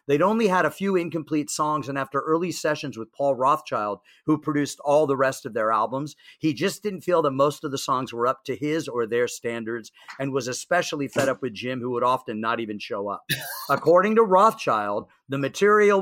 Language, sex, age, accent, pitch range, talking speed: English, male, 50-69, American, 120-155 Hz, 215 wpm